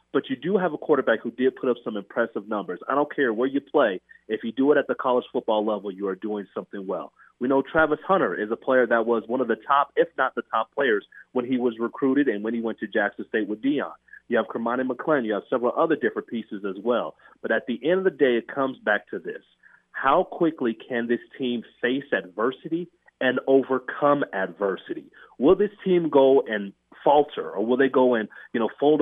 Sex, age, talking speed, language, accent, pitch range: male, 30-49, 230 wpm, English, American, 115-195 Hz